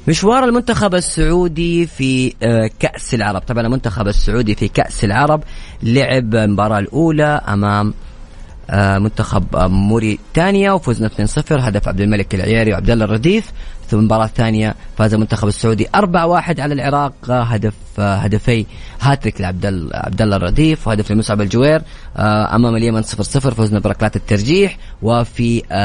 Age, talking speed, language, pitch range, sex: 30-49, 120 wpm, English, 105-145 Hz, female